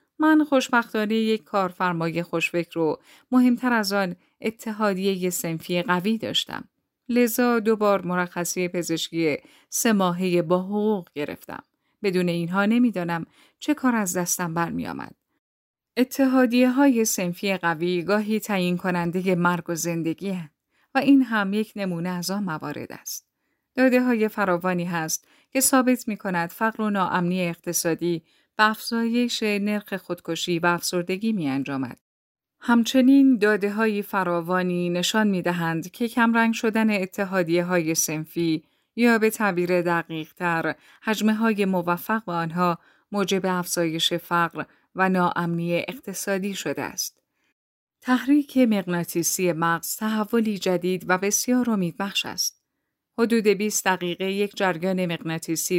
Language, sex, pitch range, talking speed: Persian, female, 175-220 Hz, 125 wpm